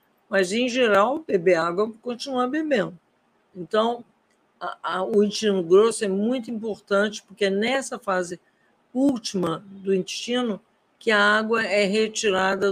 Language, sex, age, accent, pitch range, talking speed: Portuguese, female, 50-69, Brazilian, 185-230 Hz, 135 wpm